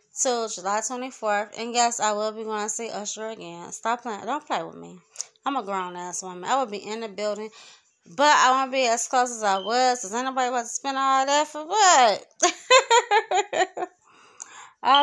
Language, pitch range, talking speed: English, 210-285 Hz, 205 wpm